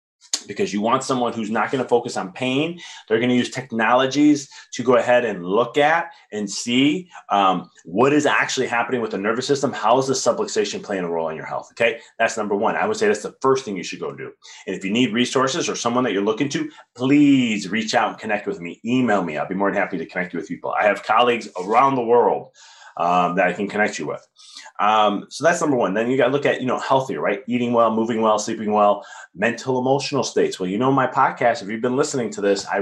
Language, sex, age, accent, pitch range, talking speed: English, male, 30-49, American, 110-135 Hz, 250 wpm